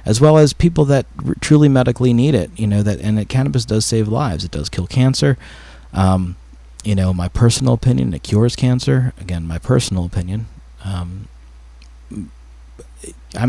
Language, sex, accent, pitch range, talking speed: English, male, American, 95-125 Hz, 170 wpm